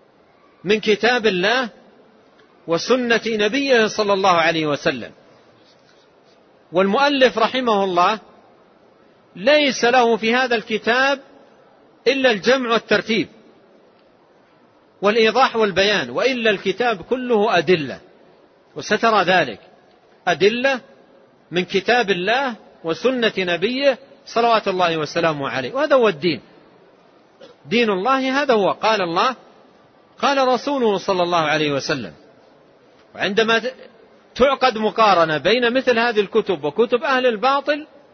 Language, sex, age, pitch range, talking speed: Arabic, male, 40-59, 175-245 Hz, 100 wpm